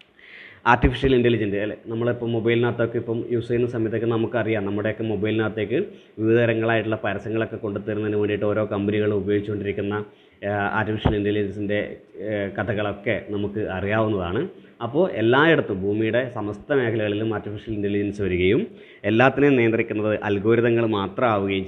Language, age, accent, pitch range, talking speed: Malayalam, 20-39, native, 105-125 Hz, 100 wpm